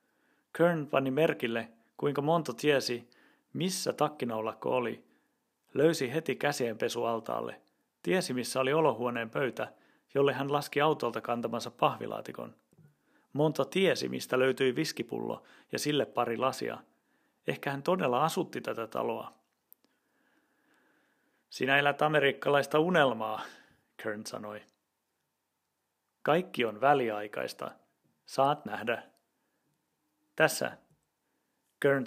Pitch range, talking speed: 115-140 Hz, 95 wpm